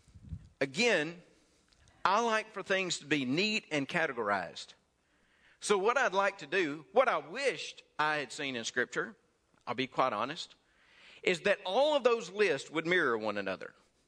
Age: 40-59